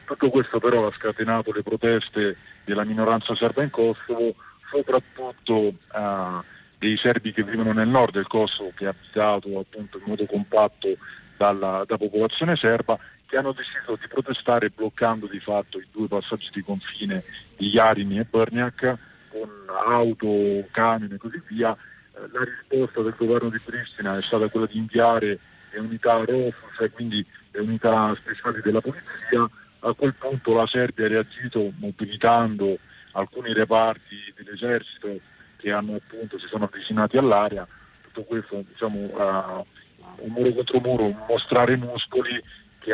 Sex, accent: male, native